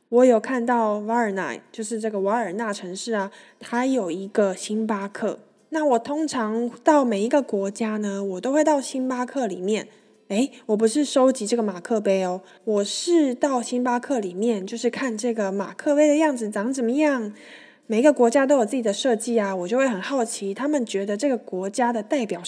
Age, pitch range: 20-39, 205-270 Hz